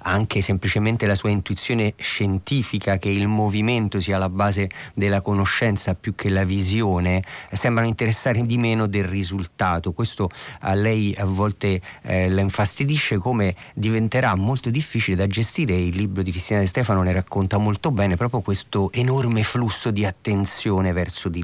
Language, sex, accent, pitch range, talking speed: Italian, male, native, 95-110 Hz, 155 wpm